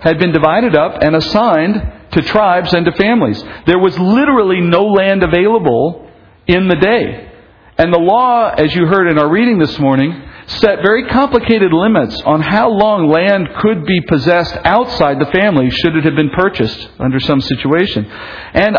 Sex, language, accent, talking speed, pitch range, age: male, English, American, 170 wpm, 150-200 Hz, 50-69